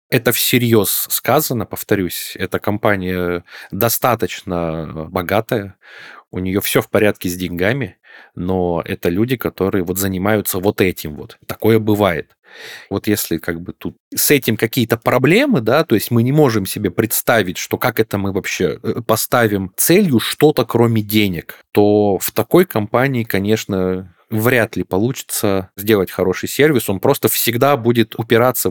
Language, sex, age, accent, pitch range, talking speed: Russian, male, 20-39, native, 95-115 Hz, 145 wpm